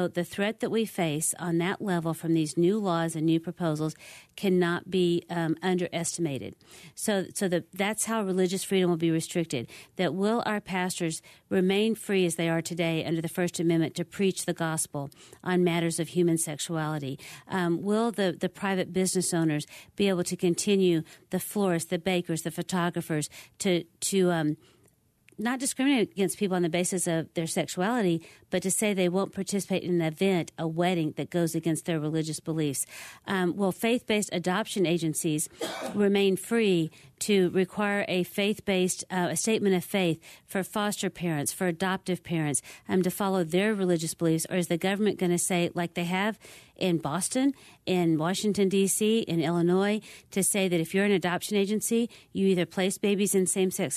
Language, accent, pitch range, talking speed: English, American, 170-195 Hz, 175 wpm